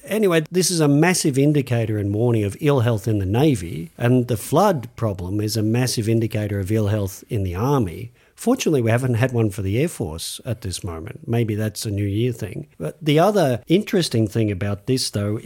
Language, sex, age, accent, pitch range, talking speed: English, male, 50-69, Australian, 105-145 Hz, 210 wpm